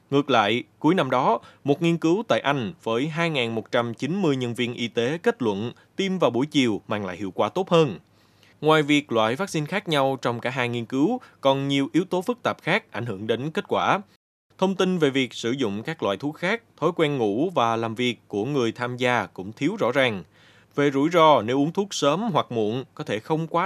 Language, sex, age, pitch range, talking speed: Vietnamese, male, 20-39, 115-165 Hz, 225 wpm